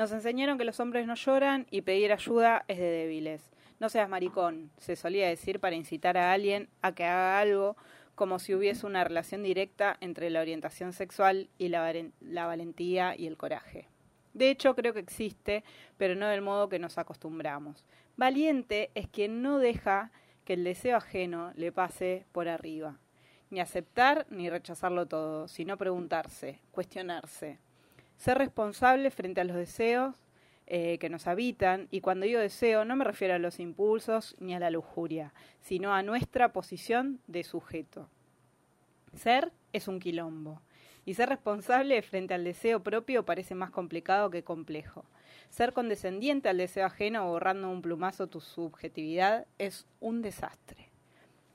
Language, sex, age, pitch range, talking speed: Spanish, female, 20-39, 170-220 Hz, 155 wpm